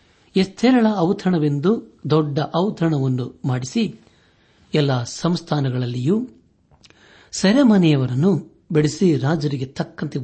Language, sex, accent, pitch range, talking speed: Kannada, male, native, 95-150 Hz, 65 wpm